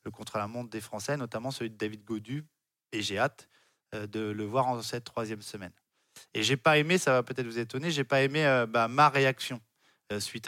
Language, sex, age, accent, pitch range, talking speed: French, male, 20-39, French, 120-145 Hz, 230 wpm